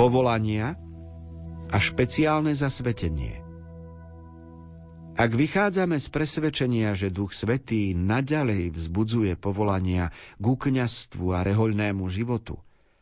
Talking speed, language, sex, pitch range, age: 90 wpm, Slovak, male, 95-125 Hz, 50-69